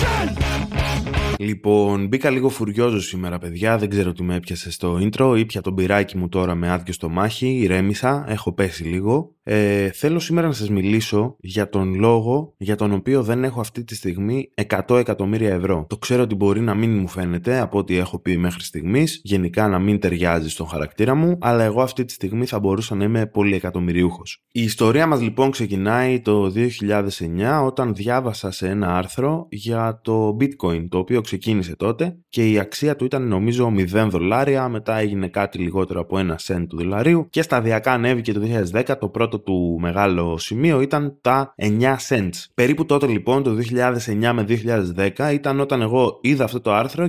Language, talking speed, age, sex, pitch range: Greek, 180 wpm, 20-39, male, 95-130 Hz